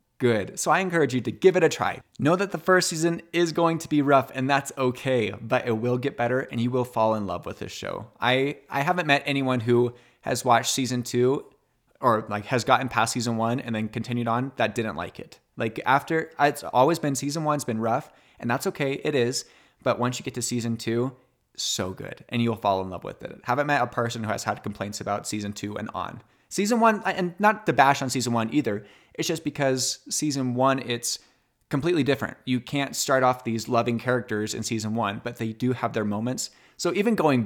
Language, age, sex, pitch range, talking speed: English, 20-39, male, 115-145 Hz, 225 wpm